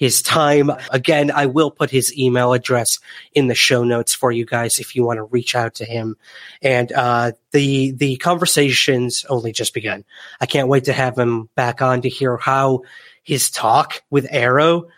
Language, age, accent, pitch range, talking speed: English, 30-49, American, 120-145 Hz, 190 wpm